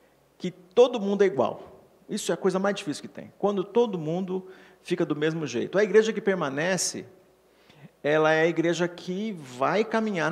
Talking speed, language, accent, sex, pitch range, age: 175 wpm, Portuguese, Brazilian, male, 160-210 Hz, 50-69